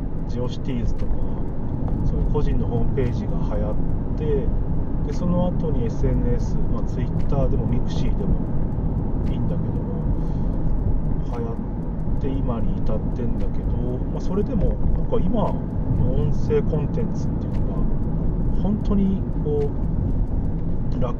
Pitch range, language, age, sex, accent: 85-125 Hz, Japanese, 40-59, male, native